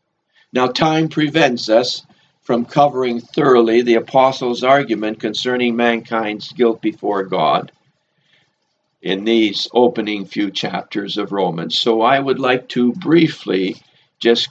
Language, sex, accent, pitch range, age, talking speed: English, male, American, 115-155 Hz, 60-79, 120 wpm